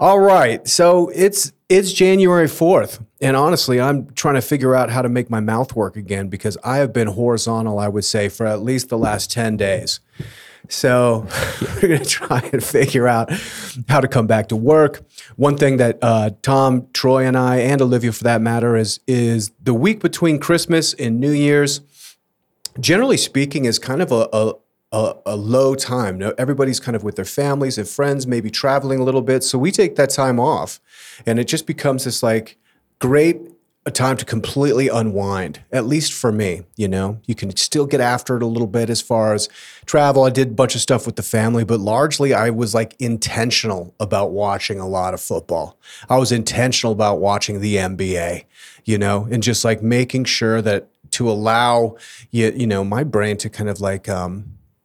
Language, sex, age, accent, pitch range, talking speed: English, male, 40-59, American, 110-135 Hz, 195 wpm